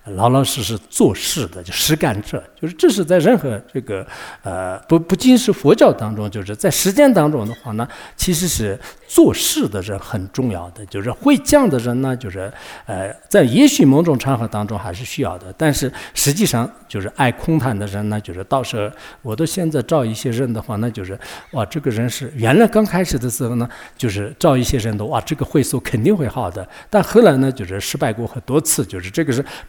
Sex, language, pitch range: male, English, 105-155 Hz